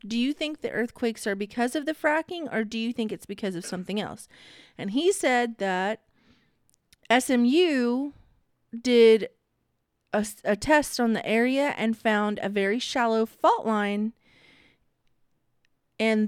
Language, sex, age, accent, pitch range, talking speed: English, female, 30-49, American, 205-250 Hz, 145 wpm